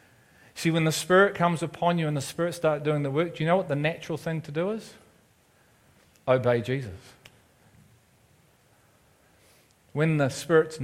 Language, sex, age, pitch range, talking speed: English, male, 40-59, 120-150 Hz, 160 wpm